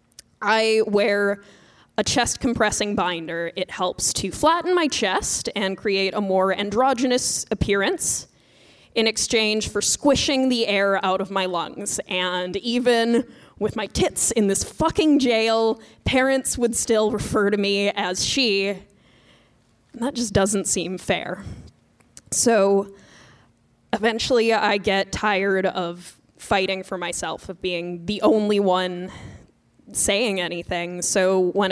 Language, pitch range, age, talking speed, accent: English, 185-220 Hz, 10-29, 125 wpm, American